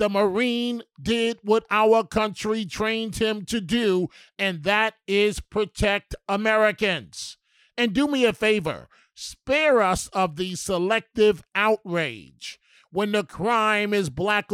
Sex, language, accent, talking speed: male, English, American, 130 wpm